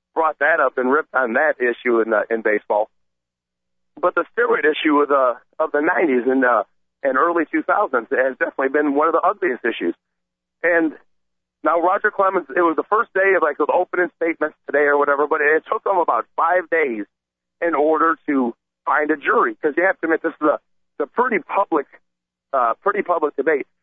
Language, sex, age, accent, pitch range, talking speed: English, male, 40-59, American, 125-170 Hz, 200 wpm